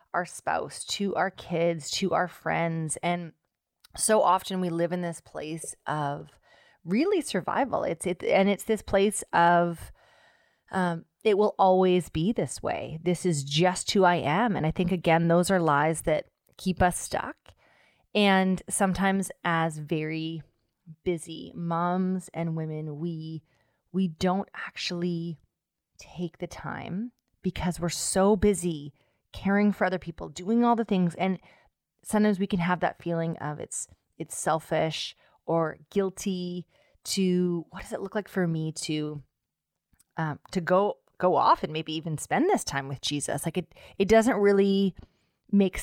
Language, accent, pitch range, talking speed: English, American, 160-190 Hz, 155 wpm